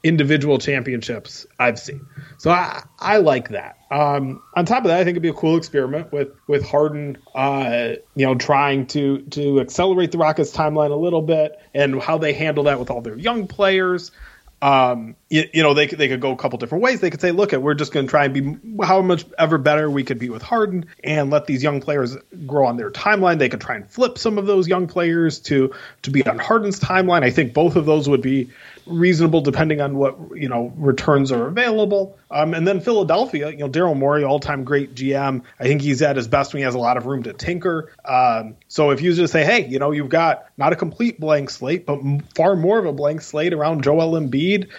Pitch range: 140-170 Hz